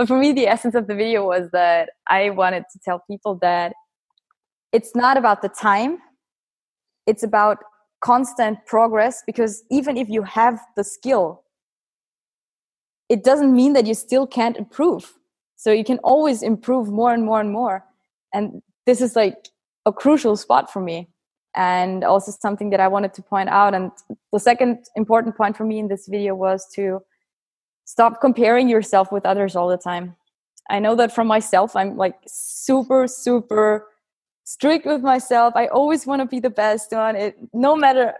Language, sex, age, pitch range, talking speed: English, female, 20-39, 195-245 Hz, 175 wpm